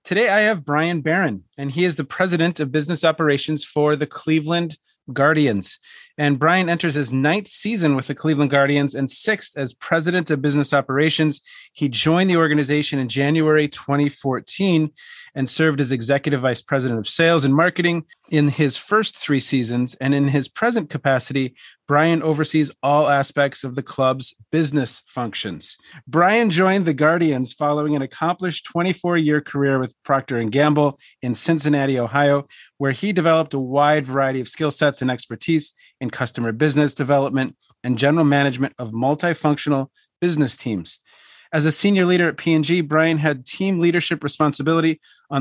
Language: English